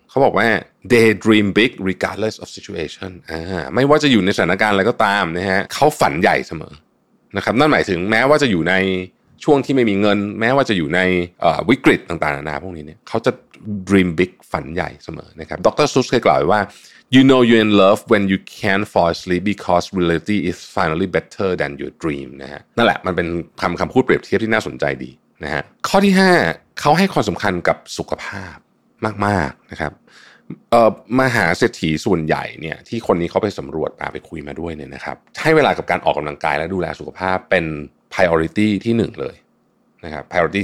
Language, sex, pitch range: Thai, male, 80-110 Hz